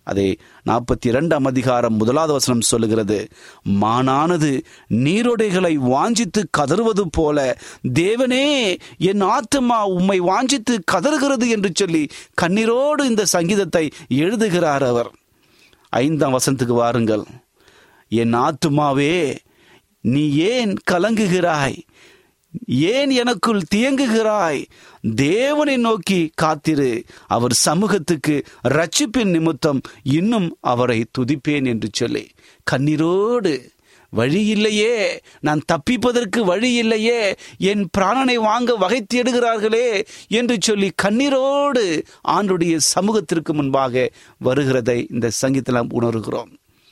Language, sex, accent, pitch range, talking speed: Tamil, male, native, 140-225 Hz, 90 wpm